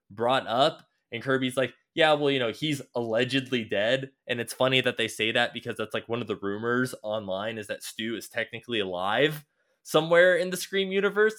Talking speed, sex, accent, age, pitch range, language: 200 wpm, male, American, 20-39, 105-135 Hz, English